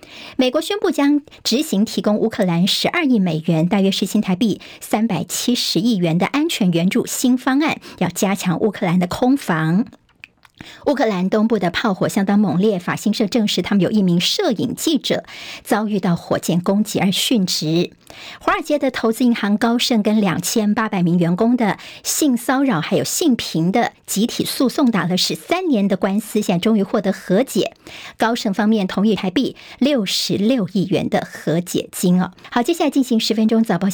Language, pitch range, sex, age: Chinese, 185-235 Hz, male, 50-69